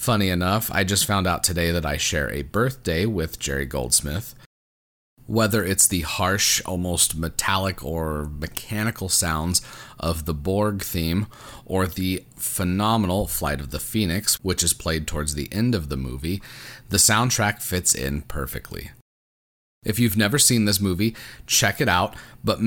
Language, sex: English, male